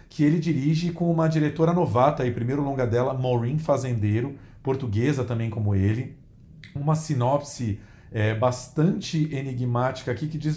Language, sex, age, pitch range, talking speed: Portuguese, male, 40-59, 115-145 Hz, 135 wpm